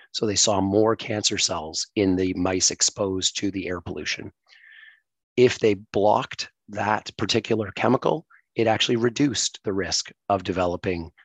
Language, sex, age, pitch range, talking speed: English, male, 30-49, 95-115 Hz, 145 wpm